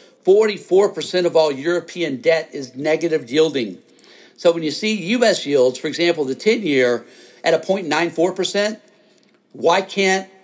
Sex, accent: male, American